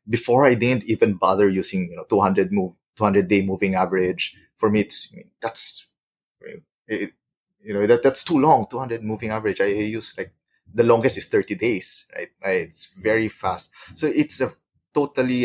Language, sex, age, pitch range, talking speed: English, male, 20-39, 95-115 Hz, 190 wpm